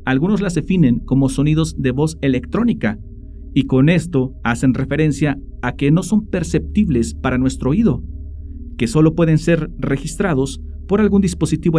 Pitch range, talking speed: 100-150 Hz, 150 wpm